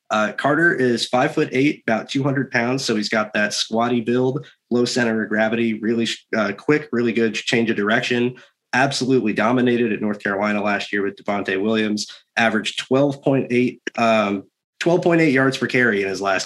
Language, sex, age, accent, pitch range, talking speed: English, male, 30-49, American, 105-125 Hz, 170 wpm